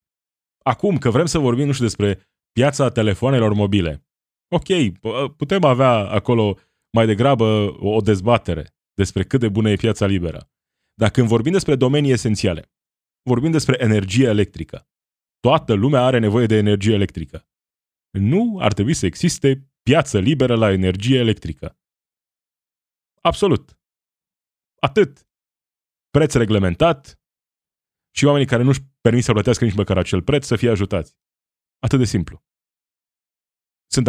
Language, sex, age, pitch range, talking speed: Romanian, male, 20-39, 95-130 Hz, 130 wpm